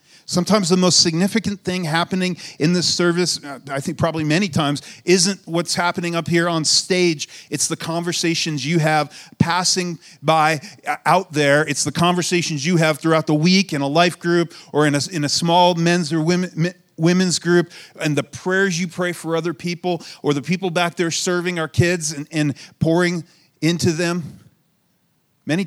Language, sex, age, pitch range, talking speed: English, male, 40-59, 140-175 Hz, 170 wpm